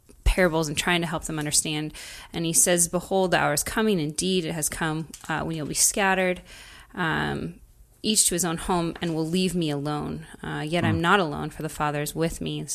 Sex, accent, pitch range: female, American, 160-185 Hz